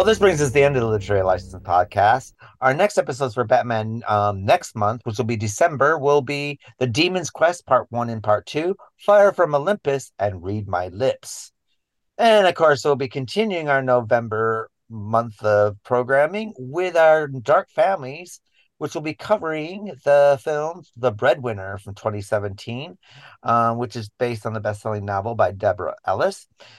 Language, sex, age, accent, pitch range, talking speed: English, male, 40-59, American, 115-160 Hz, 170 wpm